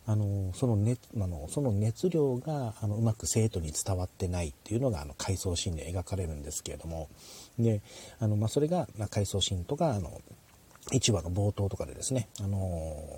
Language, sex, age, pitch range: Japanese, male, 40-59, 95-120 Hz